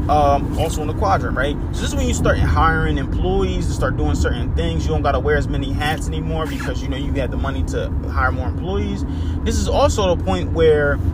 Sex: male